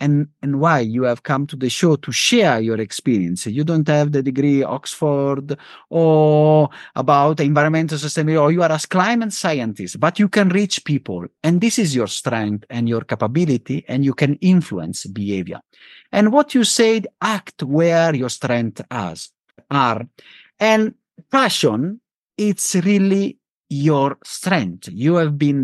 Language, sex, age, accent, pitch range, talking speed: English, male, 50-69, Italian, 125-175 Hz, 150 wpm